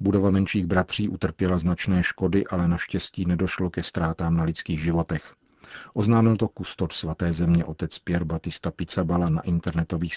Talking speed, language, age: 150 wpm, Czech, 40-59